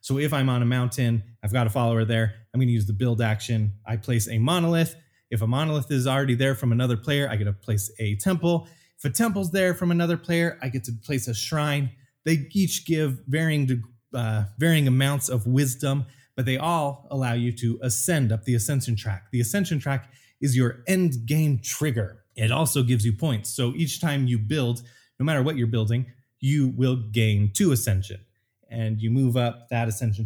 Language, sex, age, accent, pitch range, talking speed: English, male, 20-39, American, 115-150 Hz, 205 wpm